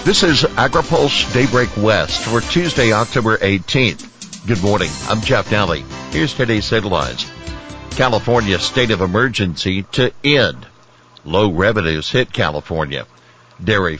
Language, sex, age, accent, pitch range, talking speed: English, male, 60-79, American, 90-115 Hz, 120 wpm